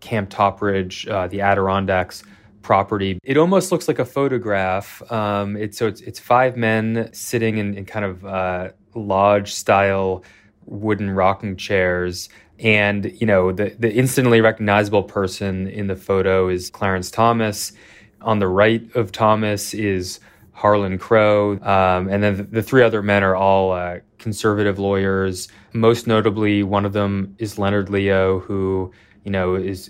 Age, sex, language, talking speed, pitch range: 20-39, male, English, 150 wpm, 95-110 Hz